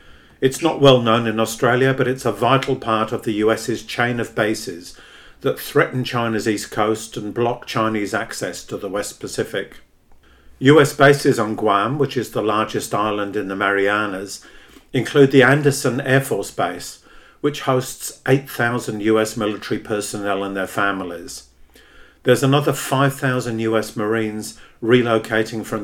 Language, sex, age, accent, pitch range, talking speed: English, male, 50-69, British, 105-130 Hz, 150 wpm